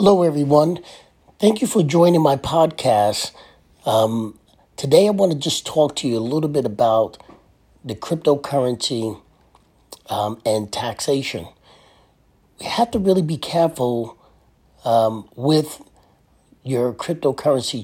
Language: English